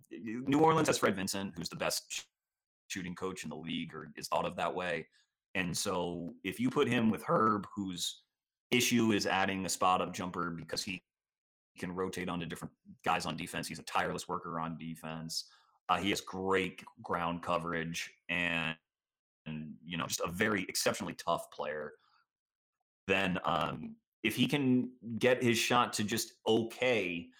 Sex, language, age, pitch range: male, English, 30-49, 85-110 Hz